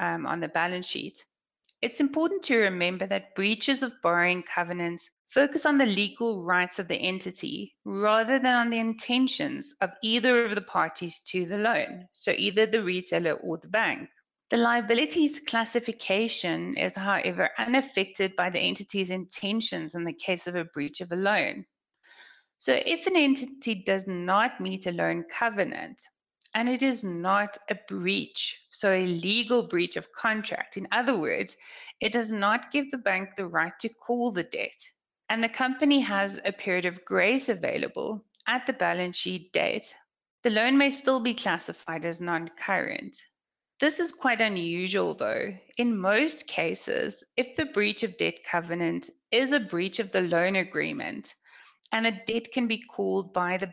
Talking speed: 165 wpm